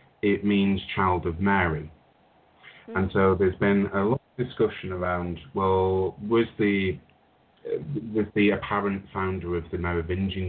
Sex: male